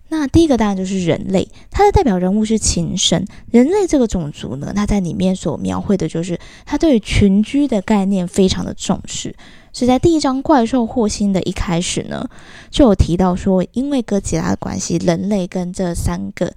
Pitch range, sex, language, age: 175-230 Hz, female, Chinese, 20-39